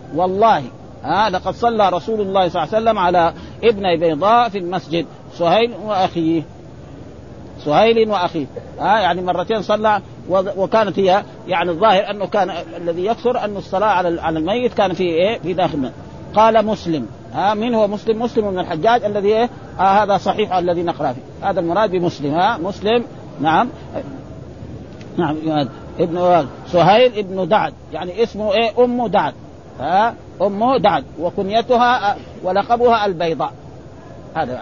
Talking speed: 140 wpm